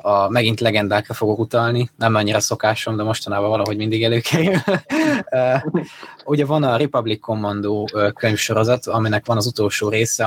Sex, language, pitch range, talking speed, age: male, Hungarian, 105-120 Hz, 140 wpm, 20-39